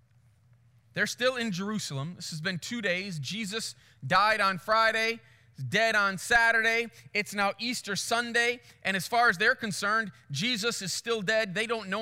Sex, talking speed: male, 170 wpm